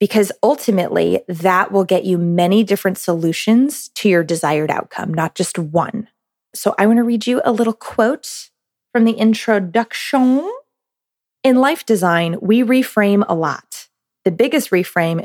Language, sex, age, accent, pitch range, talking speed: English, female, 20-39, American, 170-220 Hz, 150 wpm